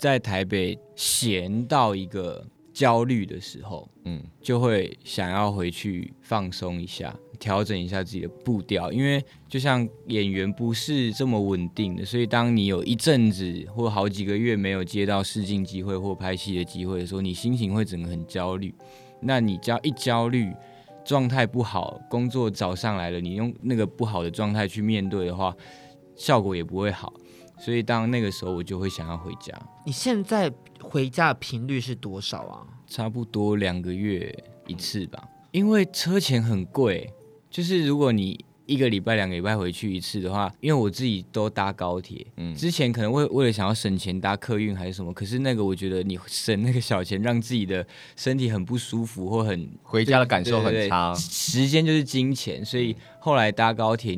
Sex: male